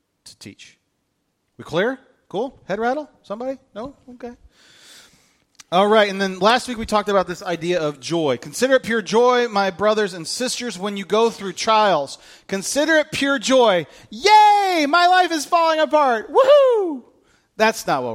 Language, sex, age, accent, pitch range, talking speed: English, male, 30-49, American, 170-230 Hz, 170 wpm